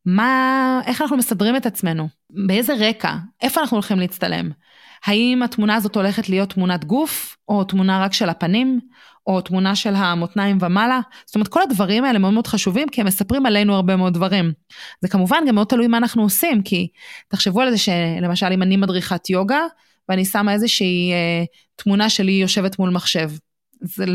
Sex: female